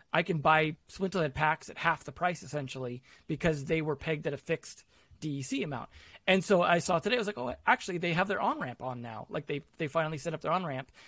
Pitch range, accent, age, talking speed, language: 155-185 Hz, American, 30-49, 235 wpm, English